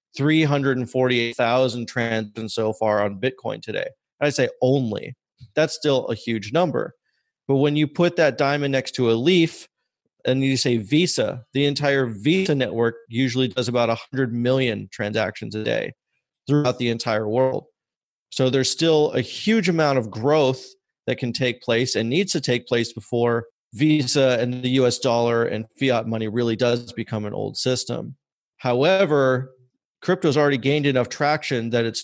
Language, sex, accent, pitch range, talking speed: English, male, American, 120-150 Hz, 160 wpm